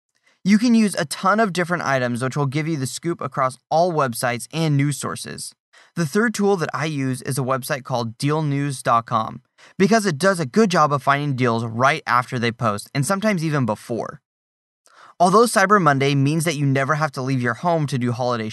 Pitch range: 120-160 Hz